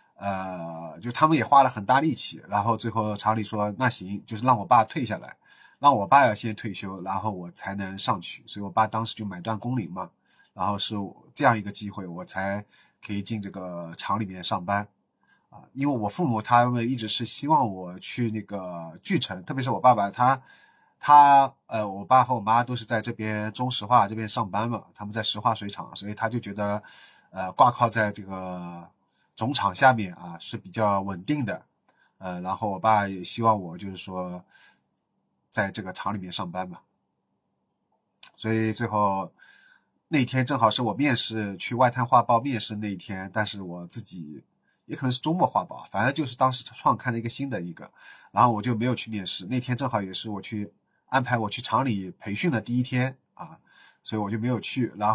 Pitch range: 95-120 Hz